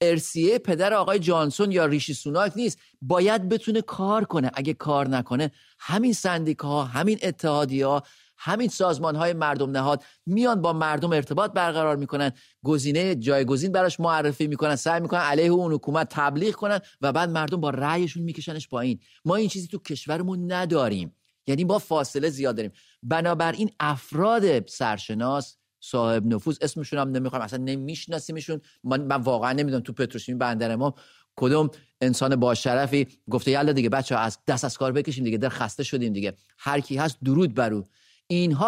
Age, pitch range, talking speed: 30-49, 130-170 Hz, 160 wpm